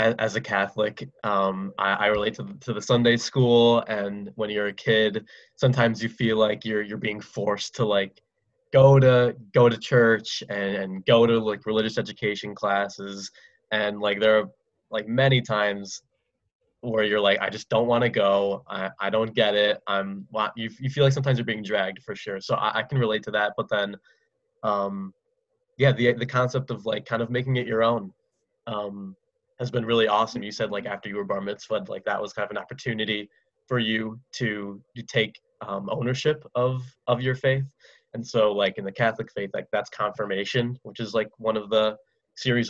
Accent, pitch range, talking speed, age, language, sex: American, 105-130 Hz, 200 wpm, 20-39, English, male